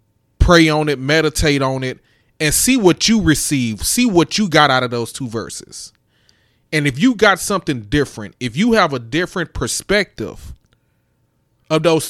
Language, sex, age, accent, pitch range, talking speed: English, male, 20-39, American, 115-155 Hz, 170 wpm